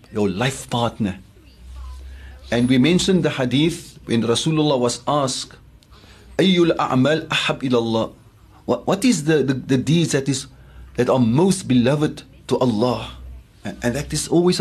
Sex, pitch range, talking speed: male, 110-150 Hz, 140 wpm